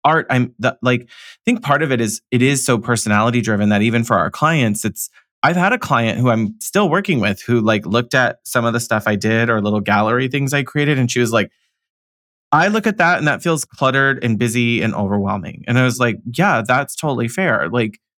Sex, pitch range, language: male, 105-125 Hz, English